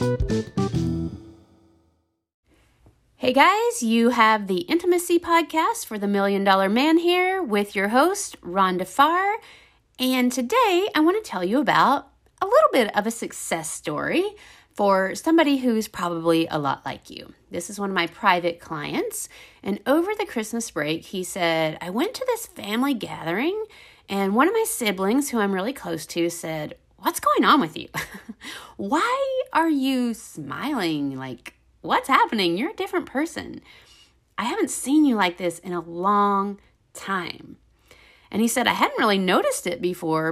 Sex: female